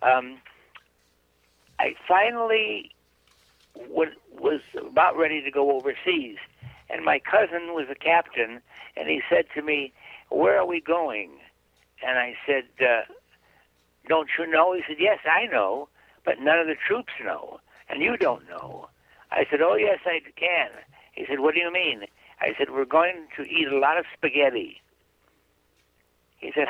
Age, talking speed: 60-79, 155 wpm